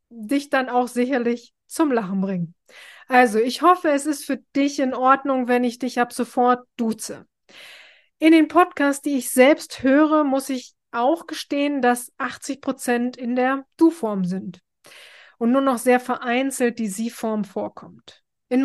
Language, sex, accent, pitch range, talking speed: German, female, German, 240-295 Hz, 160 wpm